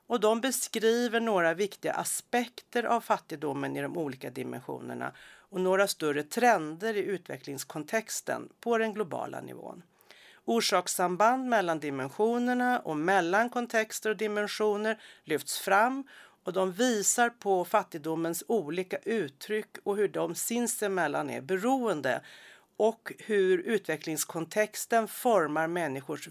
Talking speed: 115 wpm